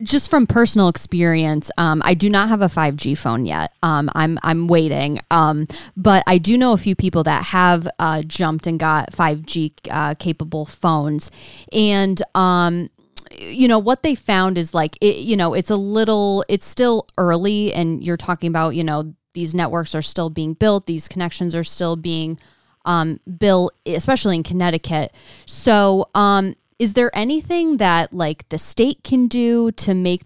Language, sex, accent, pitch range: English, female, American, 160-195 Hz